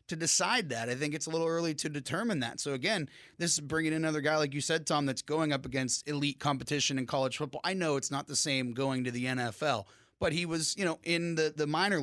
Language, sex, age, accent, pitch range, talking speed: English, male, 30-49, American, 130-165 Hz, 255 wpm